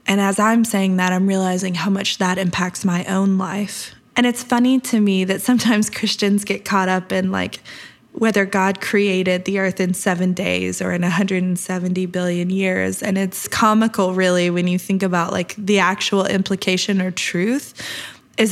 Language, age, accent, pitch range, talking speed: English, 20-39, American, 185-215 Hz, 180 wpm